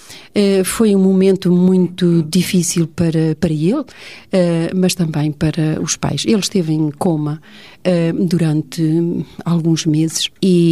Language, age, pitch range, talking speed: Portuguese, 40-59, 160-195 Hz, 120 wpm